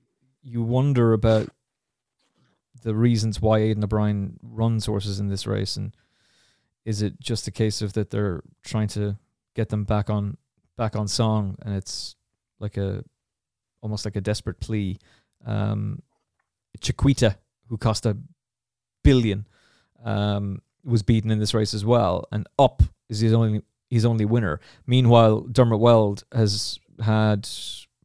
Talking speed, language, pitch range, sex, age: 145 wpm, English, 105-120 Hz, male, 20-39